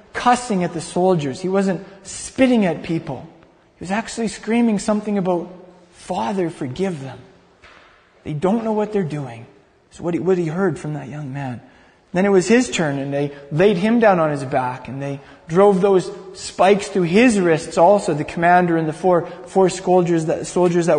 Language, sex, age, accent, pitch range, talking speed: English, male, 20-39, American, 170-220 Hz, 190 wpm